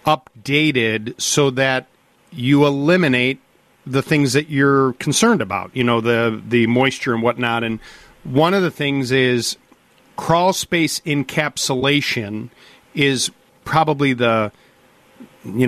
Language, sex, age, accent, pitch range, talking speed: English, male, 40-59, American, 125-155 Hz, 120 wpm